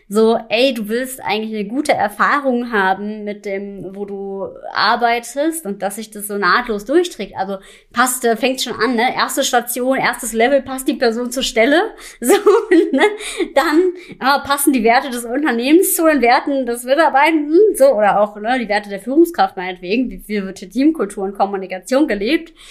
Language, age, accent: German, 20-39, German